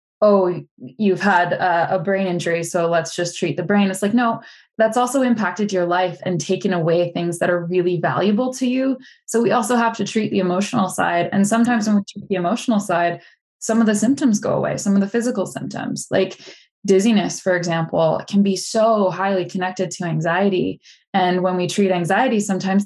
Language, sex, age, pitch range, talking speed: English, female, 10-29, 175-210 Hz, 195 wpm